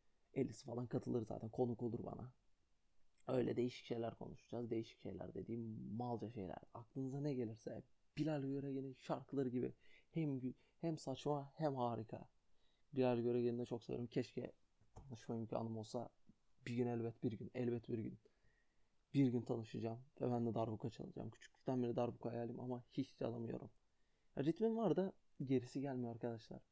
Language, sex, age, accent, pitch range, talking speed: Turkish, male, 30-49, native, 115-140 Hz, 155 wpm